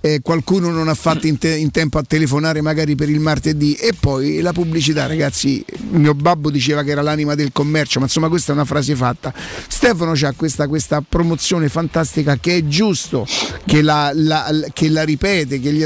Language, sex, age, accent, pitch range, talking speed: Italian, male, 50-69, native, 145-165 Hz, 195 wpm